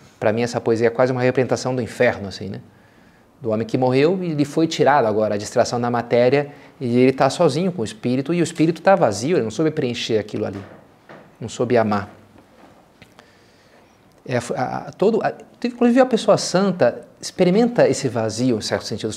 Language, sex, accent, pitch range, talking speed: Portuguese, male, Brazilian, 115-155 Hz, 190 wpm